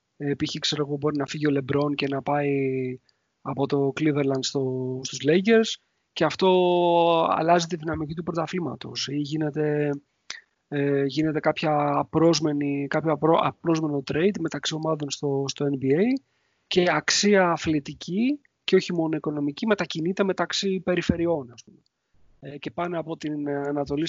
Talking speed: 135 wpm